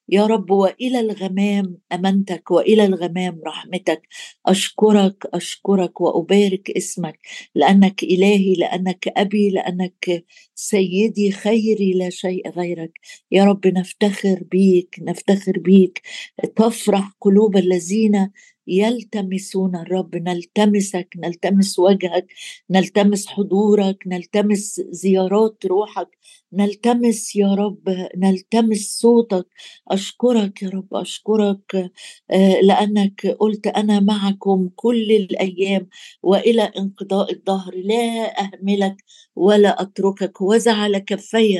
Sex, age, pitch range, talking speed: female, 50-69, 185-210 Hz, 95 wpm